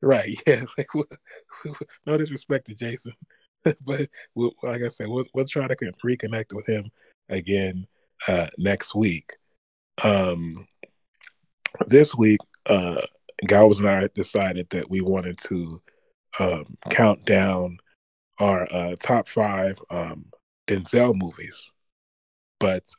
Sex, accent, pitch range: male, American, 95-125 Hz